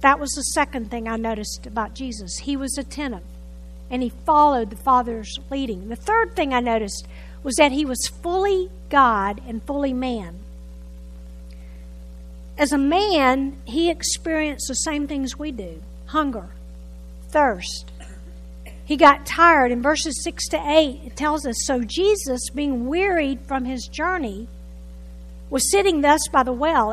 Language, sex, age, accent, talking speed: English, female, 50-69, American, 150 wpm